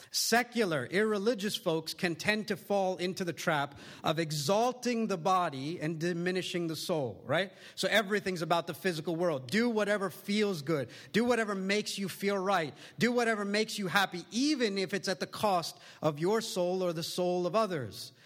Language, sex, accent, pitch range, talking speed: English, male, American, 165-205 Hz, 180 wpm